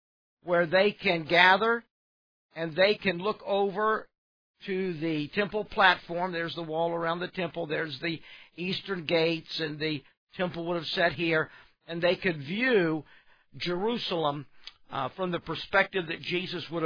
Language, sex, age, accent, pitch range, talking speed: English, male, 50-69, American, 170-205 Hz, 150 wpm